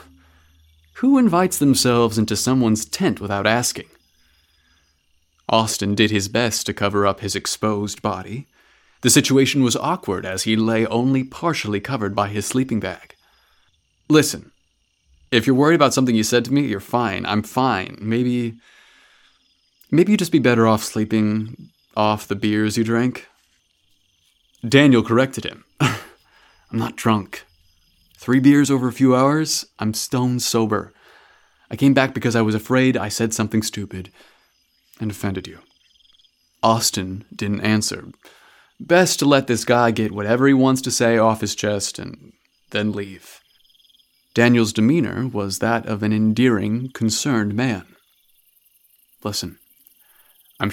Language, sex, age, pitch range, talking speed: English, male, 30-49, 100-125 Hz, 140 wpm